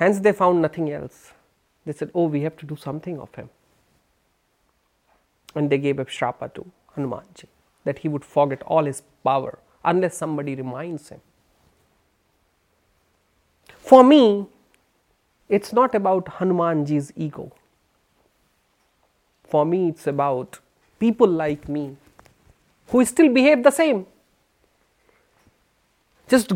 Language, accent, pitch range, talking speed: Hindi, native, 150-225 Hz, 125 wpm